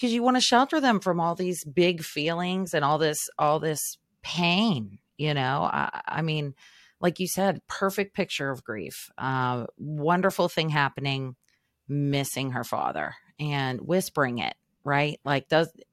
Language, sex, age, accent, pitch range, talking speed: English, female, 30-49, American, 140-185 Hz, 160 wpm